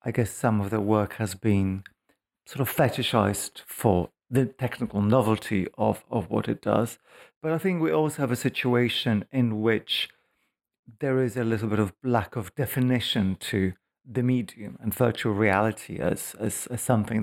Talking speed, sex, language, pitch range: 170 wpm, male, English, 105-130 Hz